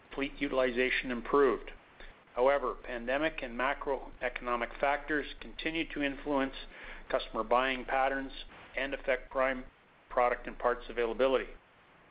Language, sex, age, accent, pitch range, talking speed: English, male, 50-69, American, 130-150 Hz, 105 wpm